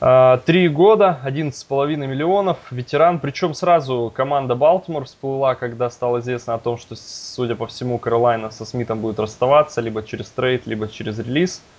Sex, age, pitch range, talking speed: male, 20-39, 115-135 Hz, 155 wpm